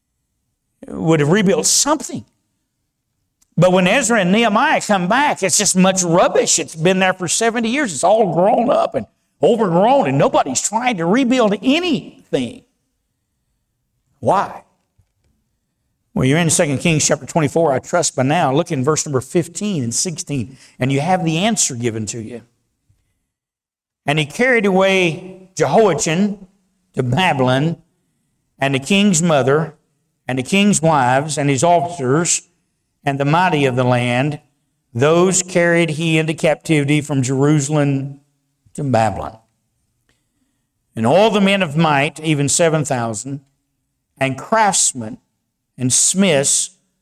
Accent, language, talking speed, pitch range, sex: American, English, 135 wpm, 135-185 Hz, male